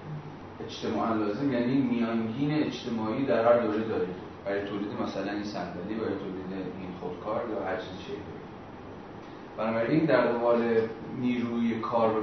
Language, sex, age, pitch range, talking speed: Persian, male, 30-49, 100-125 Hz, 140 wpm